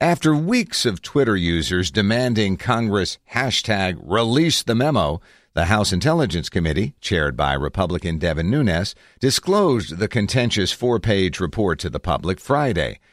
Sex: male